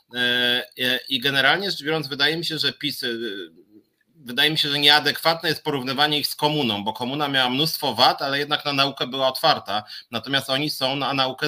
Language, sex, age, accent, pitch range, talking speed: Polish, male, 30-49, native, 140-190 Hz, 185 wpm